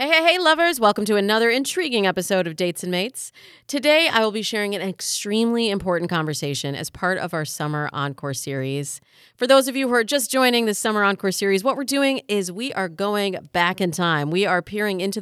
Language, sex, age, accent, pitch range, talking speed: English, female, 30-49, American, 160-220 Hz, 215 wpm